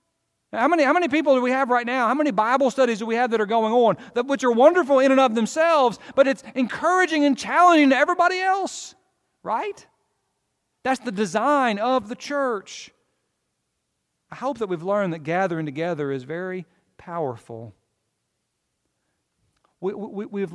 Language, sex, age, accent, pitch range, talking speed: English, male, 40-59, American, 165-235 Hz, 160 wpm